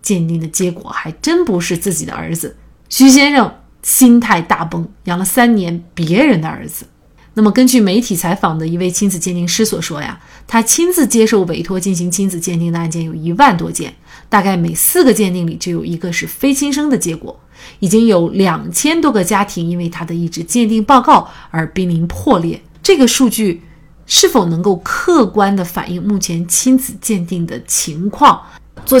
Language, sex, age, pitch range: Chinese, female, 30-49, 170-240 Hz